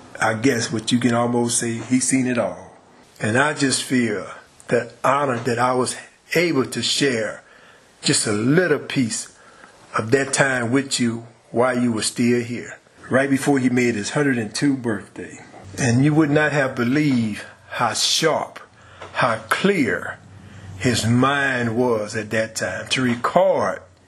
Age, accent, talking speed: 40-59, American, 155 wpm